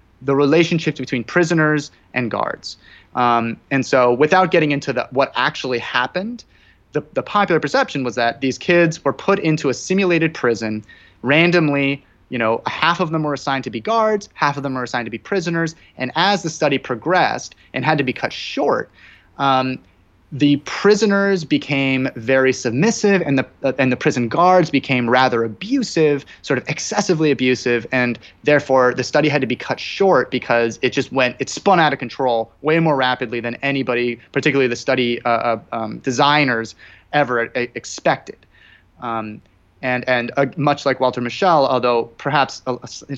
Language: English